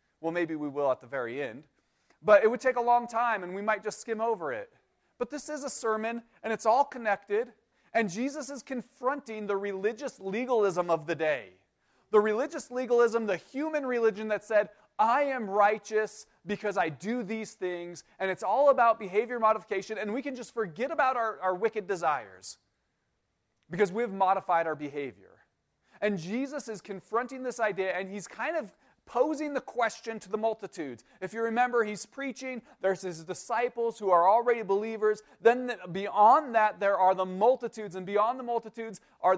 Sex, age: male, 30-49